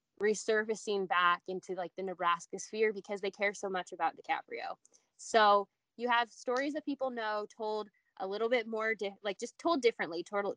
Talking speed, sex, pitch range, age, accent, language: 180 wpm, female, 180-220 Hz, 10-29, American, English